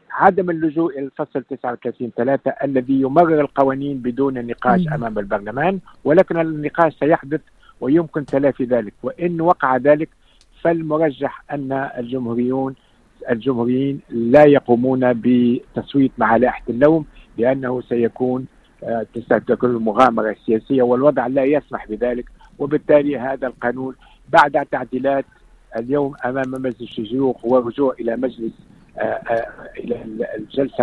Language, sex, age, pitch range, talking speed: Arabic, male, 50-69, 120-145 Hz, 105 wpm